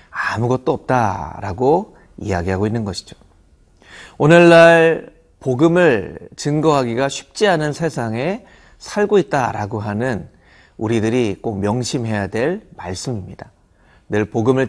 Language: Korean